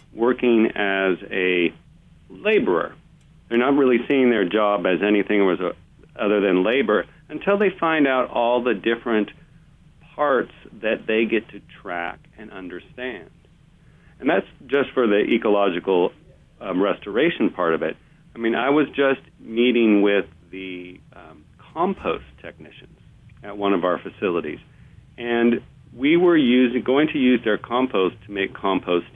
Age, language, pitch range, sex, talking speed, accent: 40-59, English, 100-135 Hz, male, 140 wpm, American